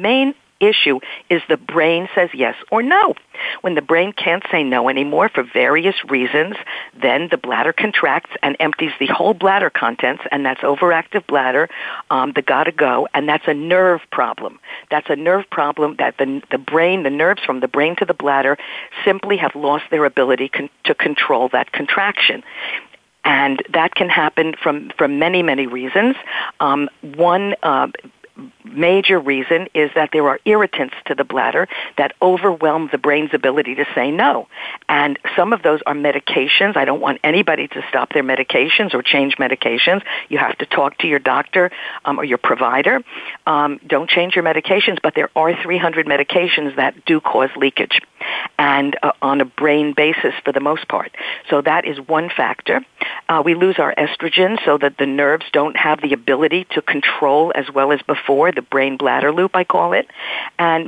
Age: 50-69